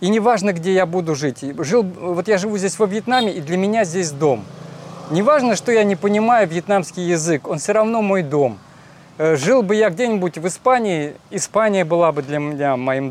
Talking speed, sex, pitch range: 190 wpm, male, 155-200 Hz